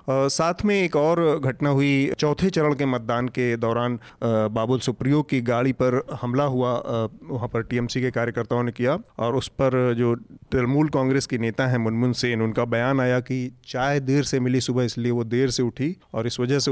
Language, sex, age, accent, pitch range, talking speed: Hindi, male, 40-59, native, 120-145 Hz, 205 wpm